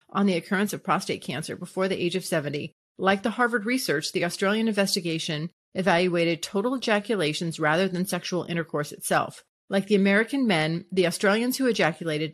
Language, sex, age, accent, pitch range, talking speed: English, female, 40-59, American, 170-225 Hz, 165 wpm